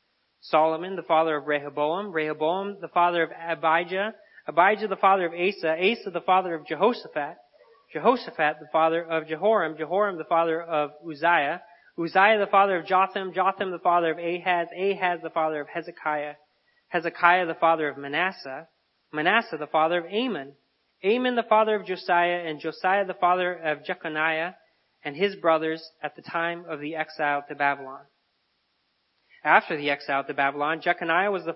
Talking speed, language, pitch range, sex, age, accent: 160 wpm, English, 150-185 Hz, male, 30-49, American